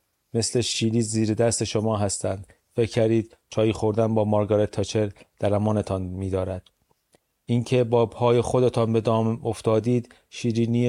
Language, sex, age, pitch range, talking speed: Persian, male, 30-49, 105-115 Hz, 120 wpm